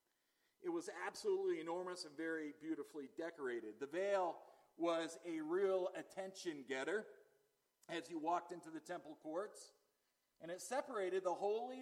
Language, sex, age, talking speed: English, male, 40-59, 135 wpm